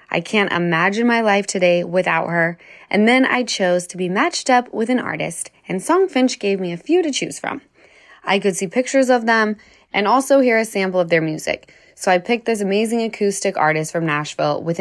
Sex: female